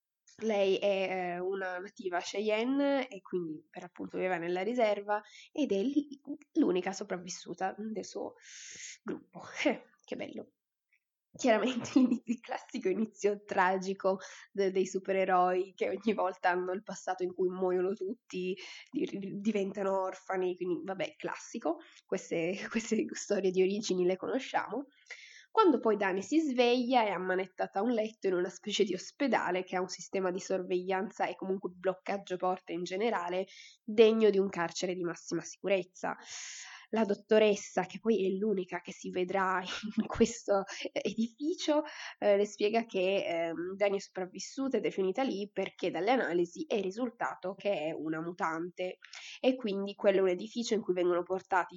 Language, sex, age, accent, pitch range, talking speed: Italian, female, 20-39, native, 185-225 Hz, 150 wpm